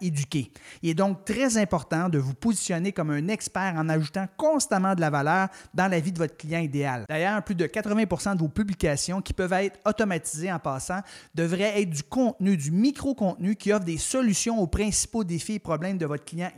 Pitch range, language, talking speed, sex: 165-205 Hz, French, 205 wpm, male